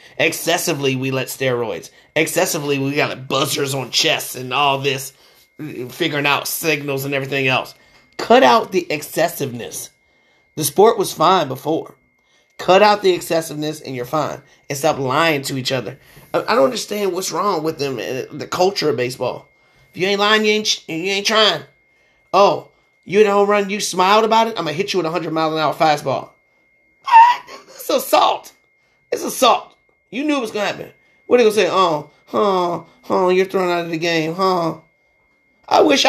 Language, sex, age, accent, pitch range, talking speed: English, male, 30-49, American, 140-190 Hz, 170 wpm